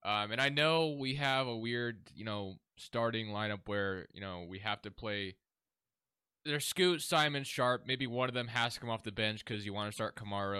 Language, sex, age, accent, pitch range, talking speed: English, male, 20-39, American, 105-130 Hz, 220 wpm